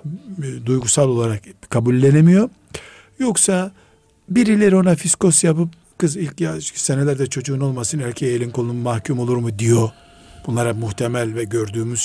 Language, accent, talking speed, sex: Turkish, native, 120 wpm, male